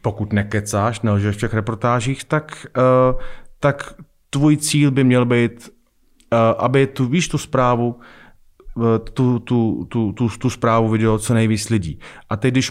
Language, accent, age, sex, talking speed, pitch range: Czech, native, 30-49, male, 145 wpm, 105-125 Hz